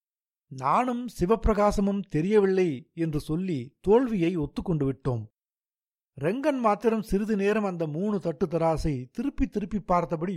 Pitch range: 145-210 Hz